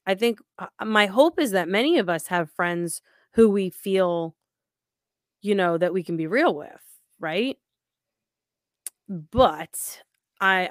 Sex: female